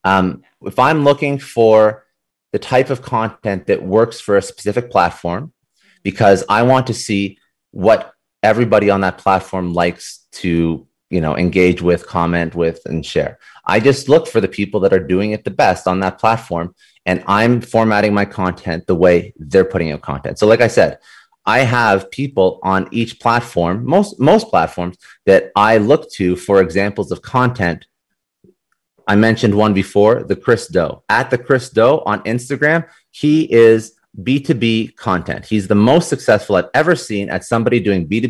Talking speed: 175 wpm